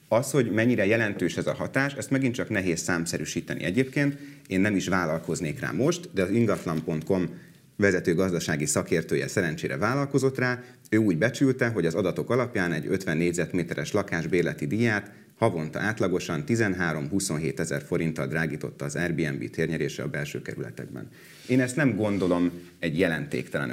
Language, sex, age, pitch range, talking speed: Hungarian, male, 30-49, 85-115 Hz, 150 wpm